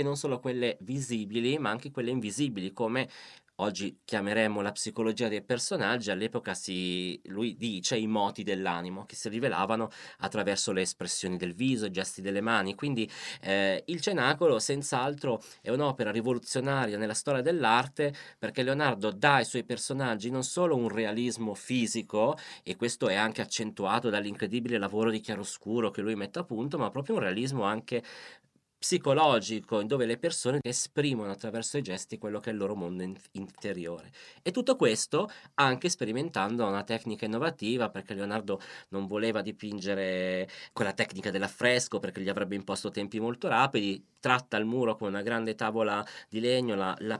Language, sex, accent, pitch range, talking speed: Italian, male, native, 100-125 Hz, 160 wpm